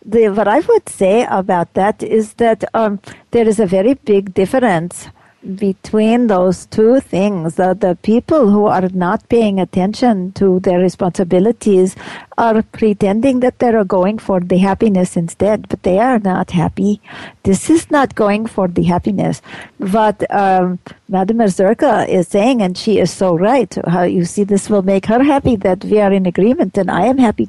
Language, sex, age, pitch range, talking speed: English, female, 50-69, 185-230 Hz, 175 wpm